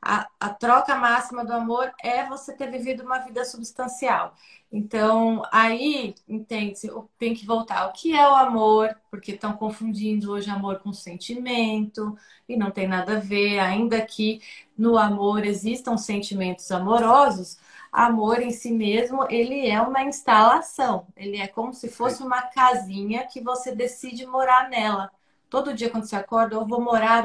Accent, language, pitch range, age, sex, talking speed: Brazilian, Portuguese, 210-260 Hz, 30-49, female, 160 wpm